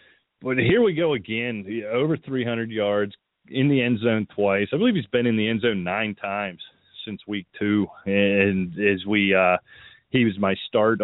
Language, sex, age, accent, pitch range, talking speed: English, male, 30-49, American, 100-120 Hz, 185 wpm